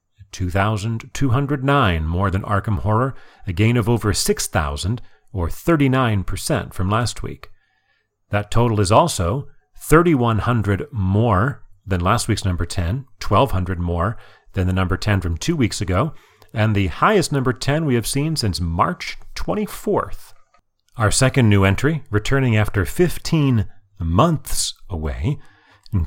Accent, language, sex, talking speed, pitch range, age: American, English, male, 130 wpm, 95-125 Hz, 40-59